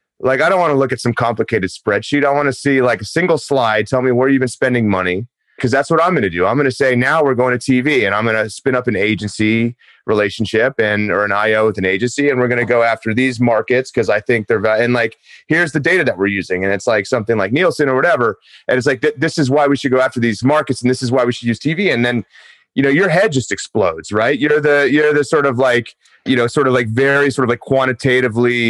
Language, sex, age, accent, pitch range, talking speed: English, male, 30-49, American, 115-140 Hz, 275 wpm